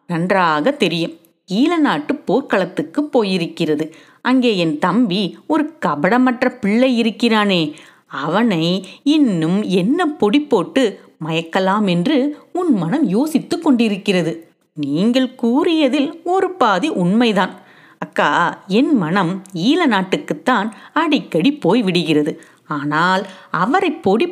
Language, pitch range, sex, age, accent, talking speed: Tamil, 180-285 Hz, female, 30-49, native, 95 wpm